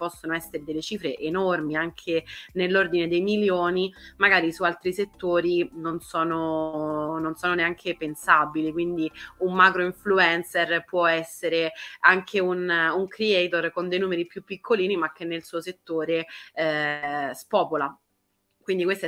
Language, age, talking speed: Italian, 20-39, 135 wpm